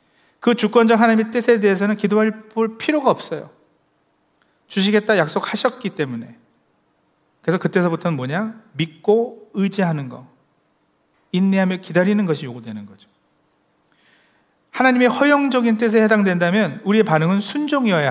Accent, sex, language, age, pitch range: native, male, Korean, 40-59, 175-220 Hz